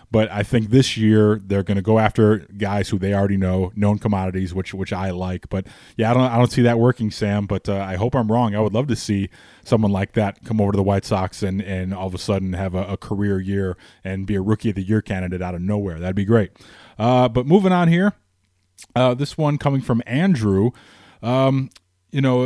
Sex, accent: male, American